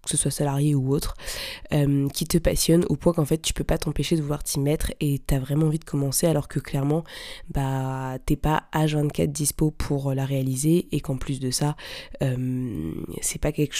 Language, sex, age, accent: French, female, 20-39, French